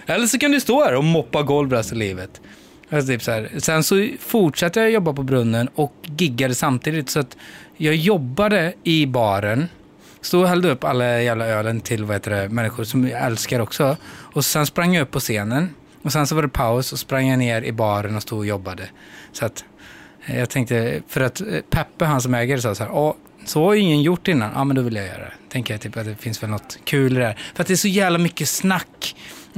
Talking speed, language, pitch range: 230 wpm, Swedish, 120-190 Hz